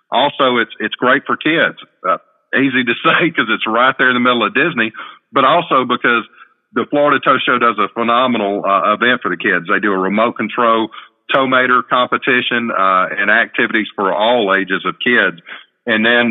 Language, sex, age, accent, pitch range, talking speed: English, male, 50-69, American, 100-130 Hz, 190 wpm